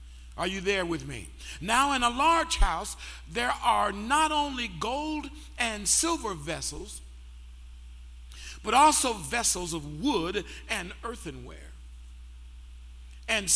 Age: 50-69